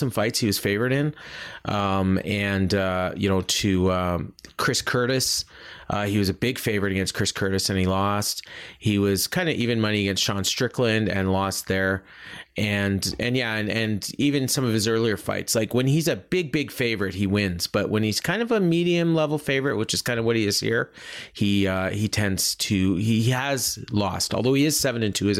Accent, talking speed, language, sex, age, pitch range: American, 215 wpm, English, male, 30-49, 100-125 Hz